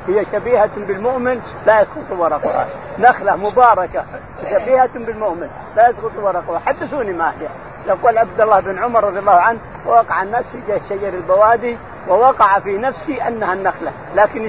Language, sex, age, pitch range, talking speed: Arabic, male, 50-69, 190-240 Hz, 145 wpm